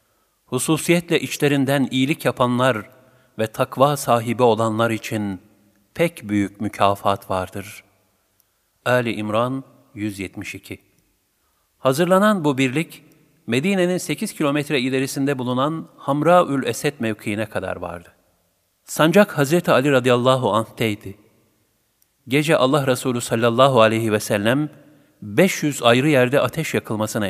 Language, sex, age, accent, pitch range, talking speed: Turkish, male, 50-69, native, 100-150 Hz, 100 wpm